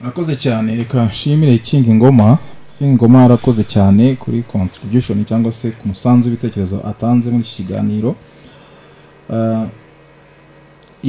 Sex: male